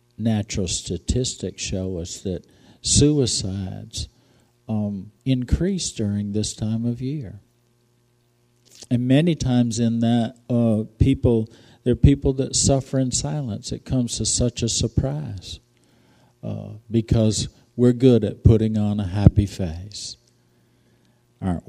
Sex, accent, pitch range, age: male, American, 100-120 Hz, 50-69